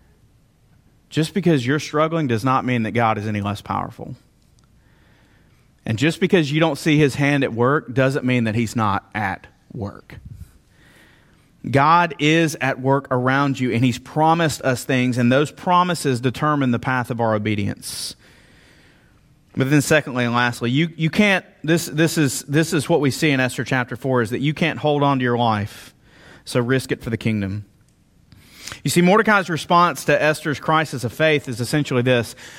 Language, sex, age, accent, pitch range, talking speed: English, male, 30-49, American, 120-155 Hz, 175 wpm